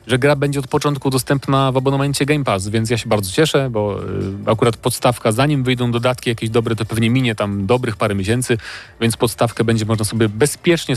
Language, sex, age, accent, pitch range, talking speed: Polish, male, 30-49, native, 105-125 Hz, 195 wpm